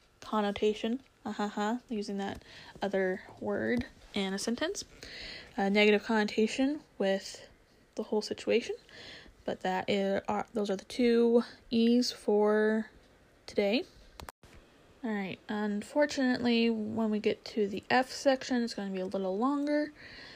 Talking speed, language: 130 wpm, English